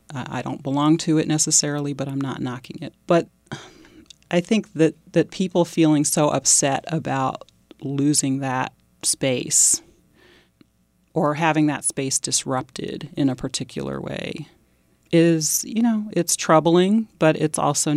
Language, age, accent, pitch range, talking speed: English, 40-59, American, 130-155 Hz, 135 wpm